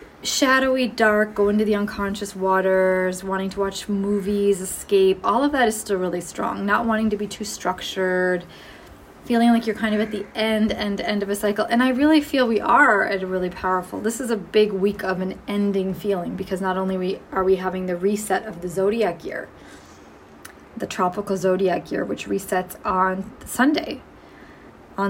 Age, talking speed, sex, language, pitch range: 20-39, 190 wpm, female, English, 190-220 Hz